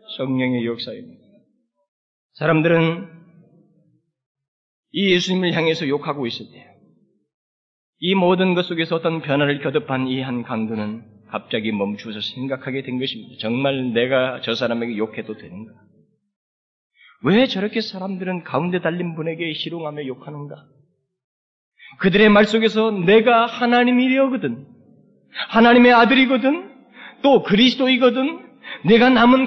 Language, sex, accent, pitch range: Korean, male, native, 155-235 Hz